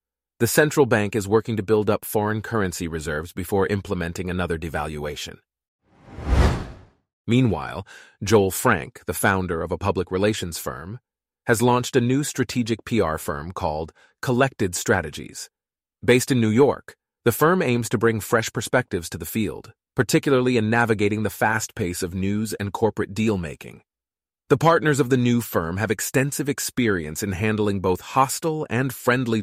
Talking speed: 155 wpm